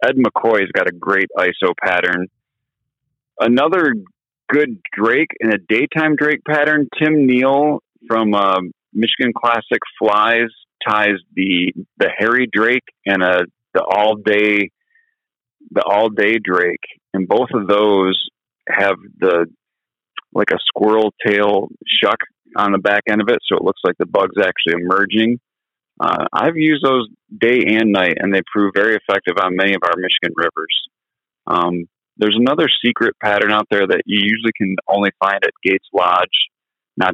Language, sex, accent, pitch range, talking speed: English, male, American, 95-115 Hz, 150 wpm